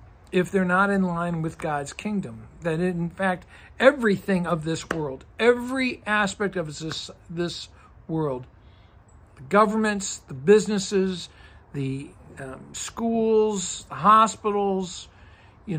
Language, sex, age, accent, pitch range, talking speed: English, male, 60-79, American, 165-220 Hz, 115 wpm